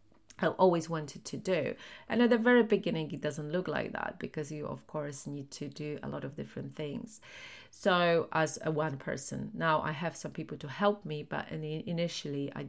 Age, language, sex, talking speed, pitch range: 30-49, English, female, 205 wpm, 145-180 Hz